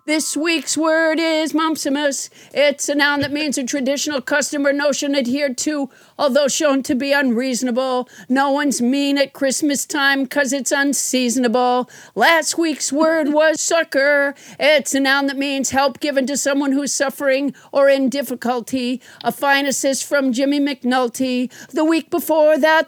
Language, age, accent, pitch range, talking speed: English, 50-69, American, 270-295 Hz, 155 wpm